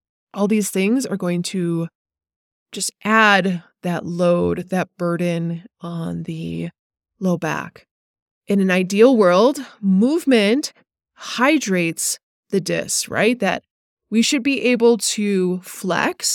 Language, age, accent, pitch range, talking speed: English, 20-39, American, 175-235 Hz, 115 wpm